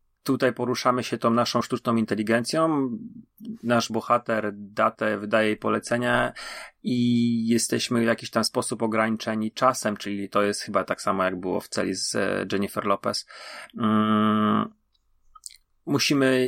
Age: 30-49